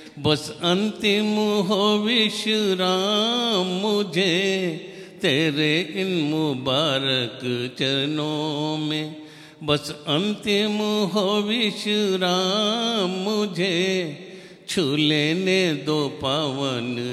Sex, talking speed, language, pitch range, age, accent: male, 65 wpm, English, 140-185 Hz, 50-69, Indian